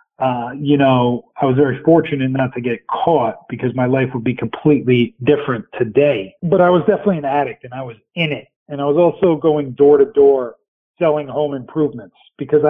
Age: 40-59